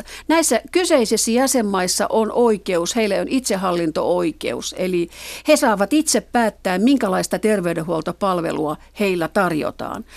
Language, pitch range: Finnish, 180-250 Hz